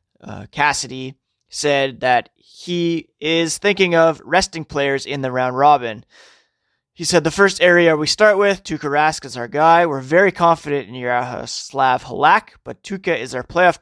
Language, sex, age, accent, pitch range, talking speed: English, male, 20-39, American, 130-165 Hz, 170 wpm